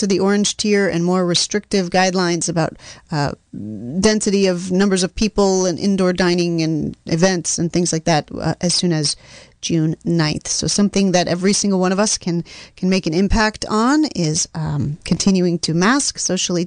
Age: 30-49